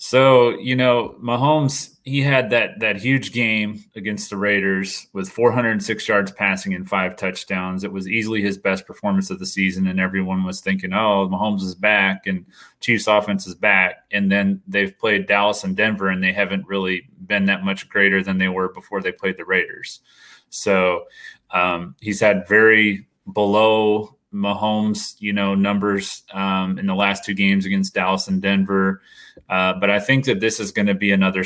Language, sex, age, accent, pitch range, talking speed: English, male, 30-49, American, 95-105 Hz, 185 wpm